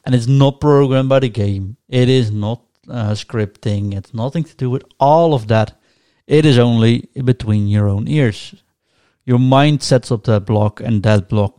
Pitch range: 110-130 Hz